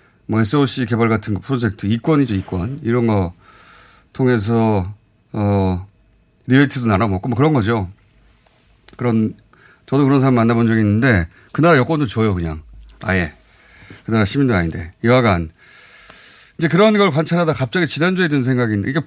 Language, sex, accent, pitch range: Korean, male, native, 105-150 Hz